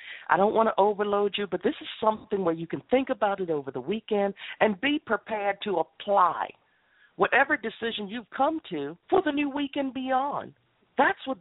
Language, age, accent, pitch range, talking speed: English, 50-69, American, 180-225 Hz, 190 wpm